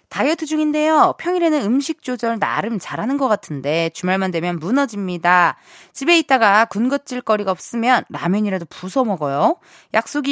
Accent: native